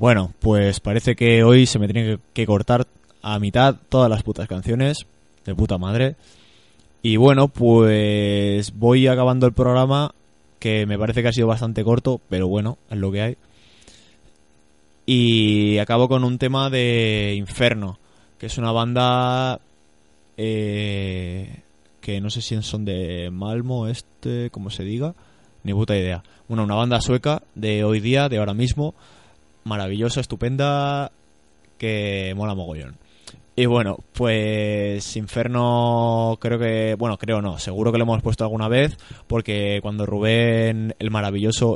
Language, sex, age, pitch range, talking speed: Spanish, male, 20-39, 100-115 Hz, 145 wpm